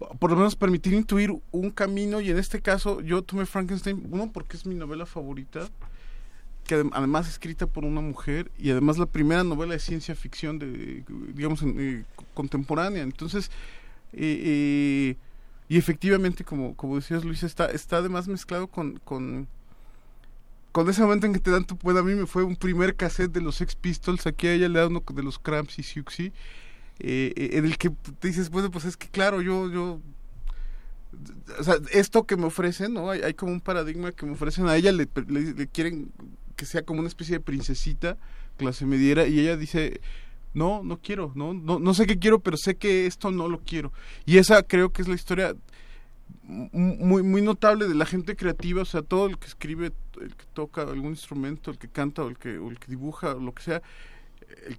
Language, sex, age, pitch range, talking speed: Spanish, male, 30-49, 145-185 Hz, 205 wpm